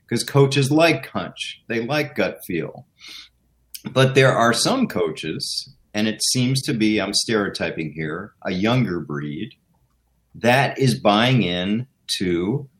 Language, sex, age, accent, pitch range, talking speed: English, male, 40-59, American, 115-165 Hz, 135 wpm